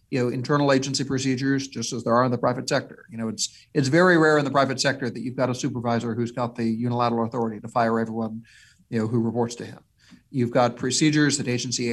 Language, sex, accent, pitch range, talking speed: English, male, American, 120-145 Hz, 235 wpm